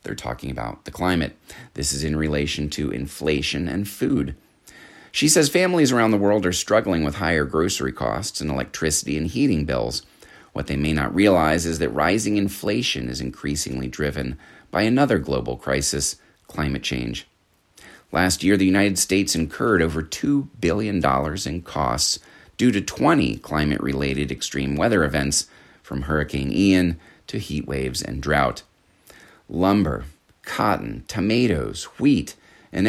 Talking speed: 145 wpm